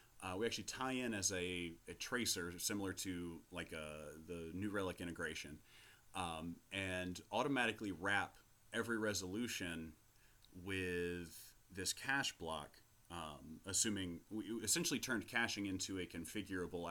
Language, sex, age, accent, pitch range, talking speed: English, male, 30-49, American, 85-105 Hz, 125 wpm